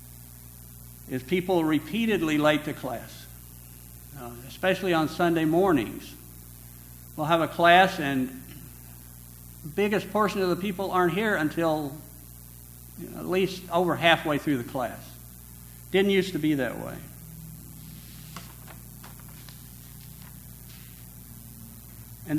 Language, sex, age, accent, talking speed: English, male, 60-79, American, 105 wpm